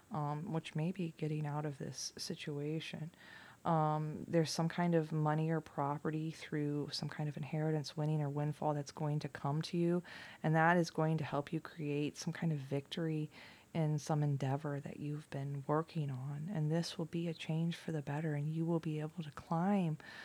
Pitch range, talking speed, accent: 150-175 Hz, 200 wpm, American